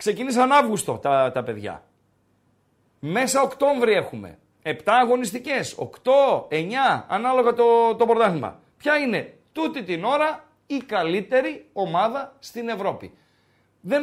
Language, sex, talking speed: Greek, male, 115 wpm